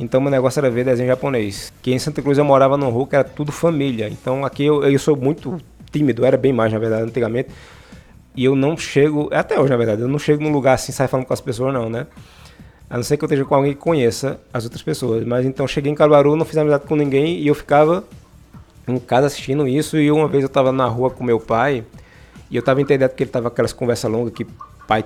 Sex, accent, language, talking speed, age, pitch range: male, Brazilian, Portuguese, 255 wpm, 20-39, 125-150 Hz